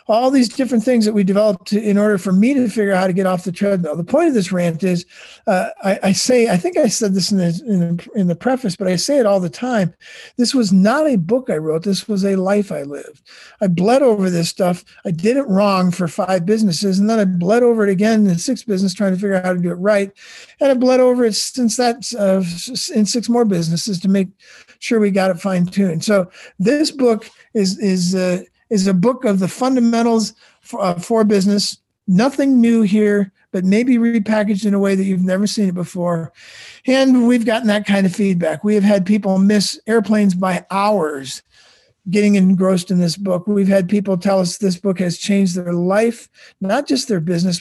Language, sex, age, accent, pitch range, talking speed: English, male, 50-69, American, 180-220 Hz, 225 wpm